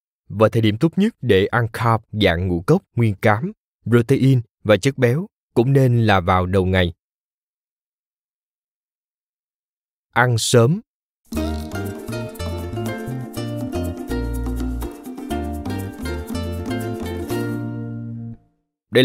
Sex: male